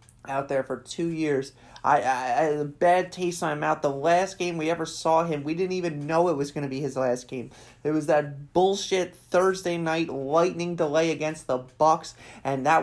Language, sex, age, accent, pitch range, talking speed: English, male, 30-49, American, 130-165 Hz, 220 wpm